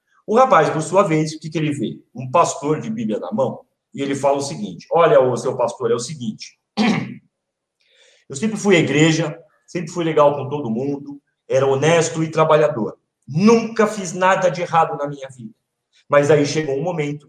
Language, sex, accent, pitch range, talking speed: Portuguese, male, Brazilian, 150-200 Hz, 195 wpm